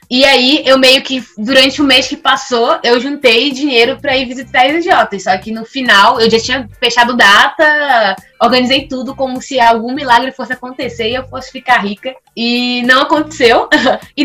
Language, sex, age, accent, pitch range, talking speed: Portuguese, female, 20-39, Brazilian, 225-285 Hz, 185 wpm